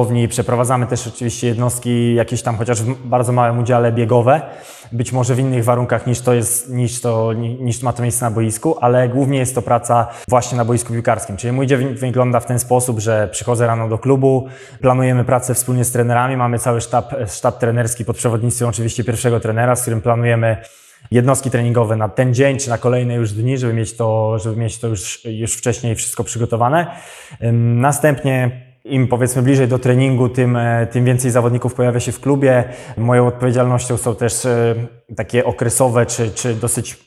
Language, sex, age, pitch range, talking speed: Polish, male, 20-39, 115-125 Hz, 180 wpm